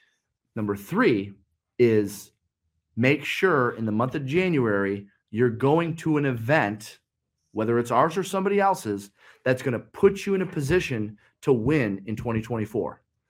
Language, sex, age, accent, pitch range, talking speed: English, male, 30-49, American, 115-160 Hz, 145 wpm